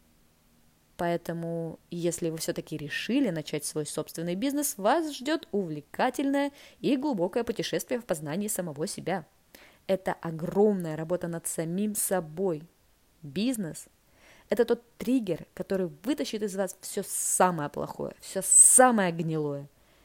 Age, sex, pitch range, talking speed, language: 20-39, female, 160-230 Hz, 115 wpm, Russian